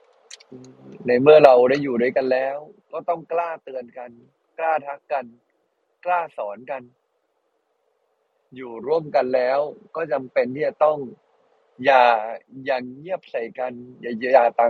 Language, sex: Thai, male